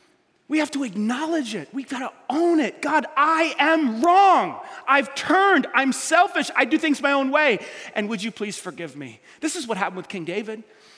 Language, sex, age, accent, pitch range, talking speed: English, male, 30-49, American, 225-310 Hz, 200 wpm